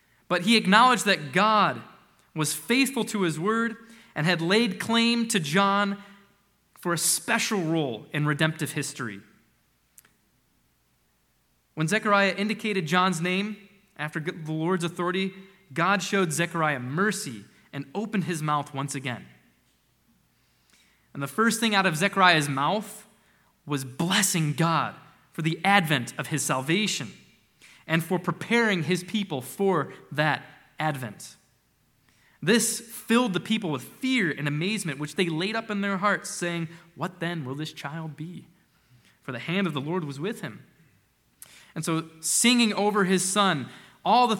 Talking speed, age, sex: 145 wpm, 20-39, male